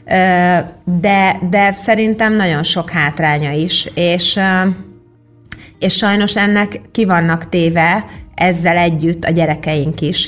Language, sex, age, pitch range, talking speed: Hungarian, female, 30-49, 165-195 Hz, 110 wpm